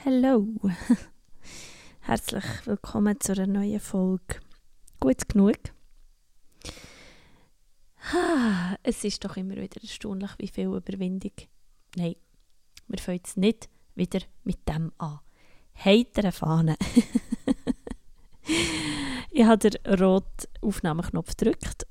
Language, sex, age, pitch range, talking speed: German, female, 20-39, 180-215 Hz, 95 wpm